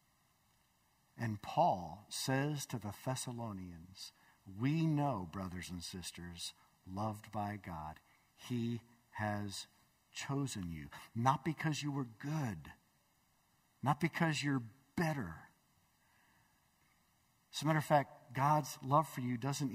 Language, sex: English, male